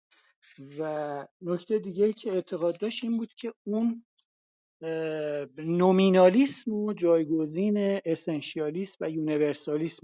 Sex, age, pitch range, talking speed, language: male, 50-69, 150-195 Hz, 100 wpm, Persian